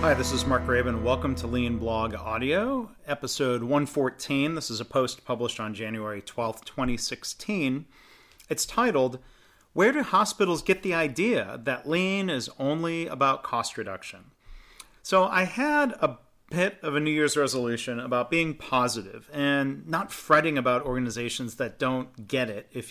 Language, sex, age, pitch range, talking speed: English, male, 40-59, 120-155 Hz, 155 wpm